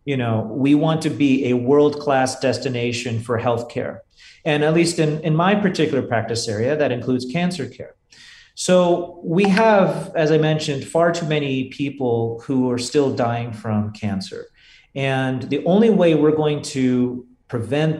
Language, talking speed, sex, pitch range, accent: English, 160 wpm, male, 125-170 Hz, American